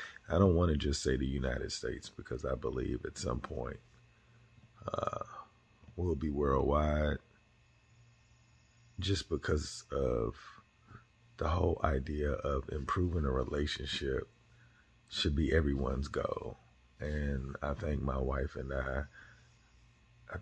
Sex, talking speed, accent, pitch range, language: male, 120 wpm, American, 75-115 Hz, English